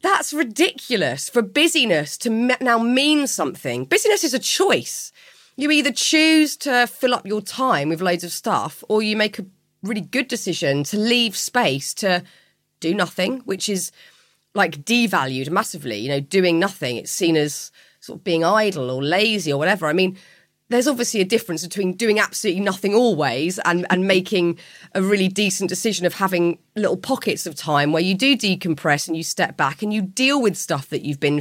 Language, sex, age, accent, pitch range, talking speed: English, female, 30-49, British, 175-225 Hz, 185 wpm